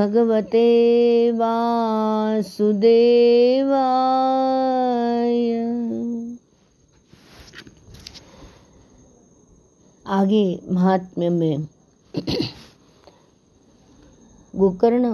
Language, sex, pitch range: Hindi, female, 170-235 Hz